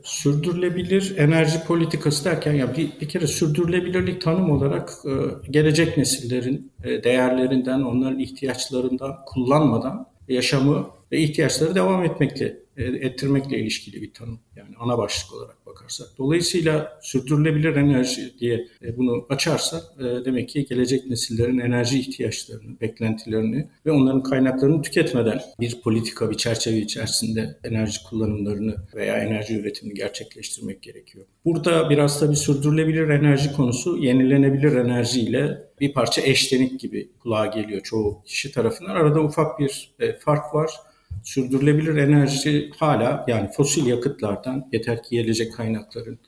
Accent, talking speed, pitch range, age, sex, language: native, 120 wpm, 115-150 Hz, 50-69, male, Turkish